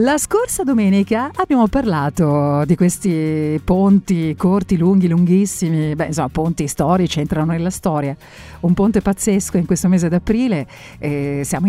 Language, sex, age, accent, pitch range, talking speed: Italian, female, 50-69, native, 155-210 Hz, 130 wpm